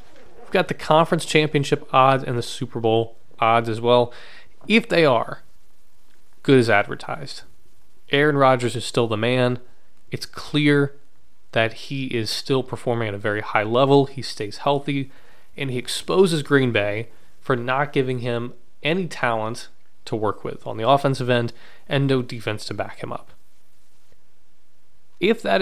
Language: English